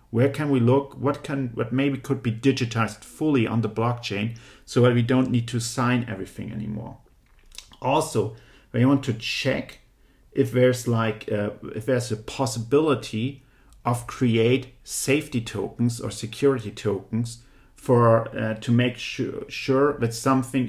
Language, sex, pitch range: English, male, 110-130 Hz